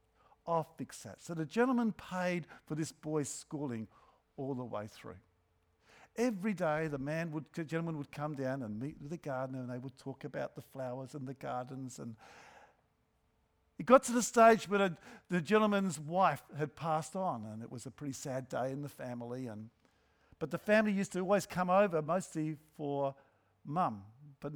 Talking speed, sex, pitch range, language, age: 185 wpm, male, 135-195 Hz, English, 50-69